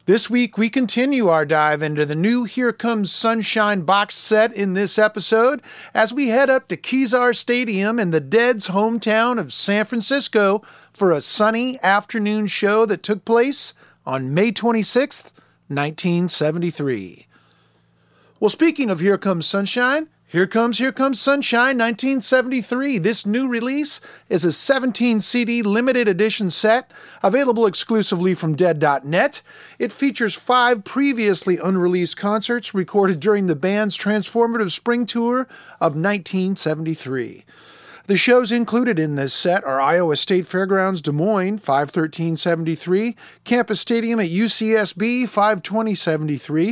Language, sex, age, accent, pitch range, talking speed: English, male, 40-59, American, 175-235 Hz, 130 wpm